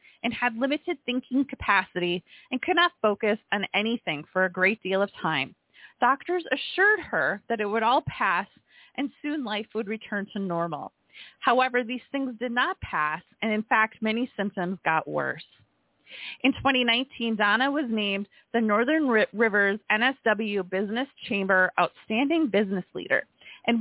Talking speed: 150 wpm